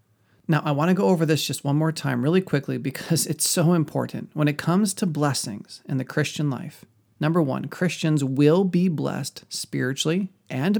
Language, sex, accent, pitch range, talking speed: English, male, American, 120-160 Hz, 190 wpm